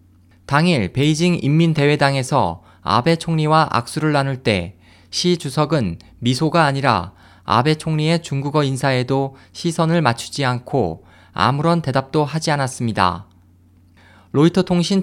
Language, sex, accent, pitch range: Korean, male, native, 95-160 Hz